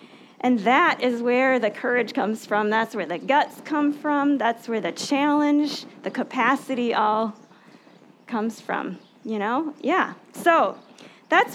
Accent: American